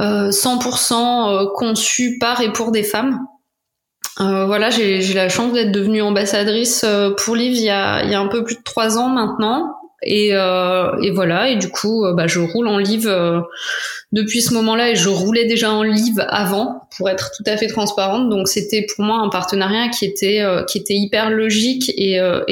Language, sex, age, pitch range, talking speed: French, female, 20-39, 195-235 Hz, 195 wpm